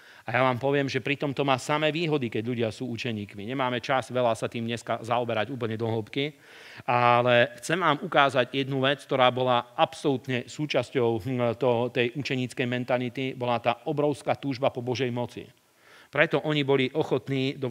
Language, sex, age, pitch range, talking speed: Slovak, male, 40-59, 120-140 Hz, 170 wpm